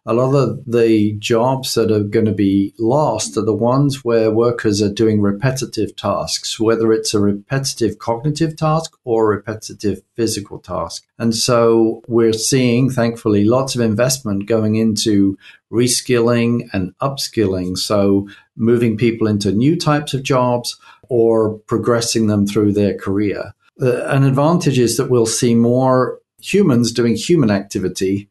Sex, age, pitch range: male, 50-69, 110-125 Hz